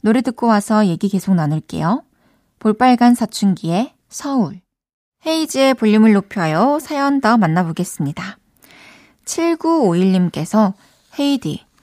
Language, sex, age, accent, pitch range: Korean, female, 20-39, native, 190-255 Hz